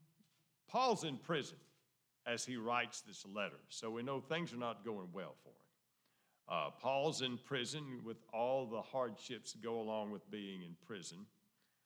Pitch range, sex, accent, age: 120-165 Hz, male, American, 50-69